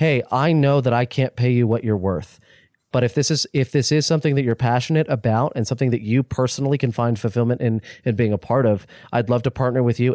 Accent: American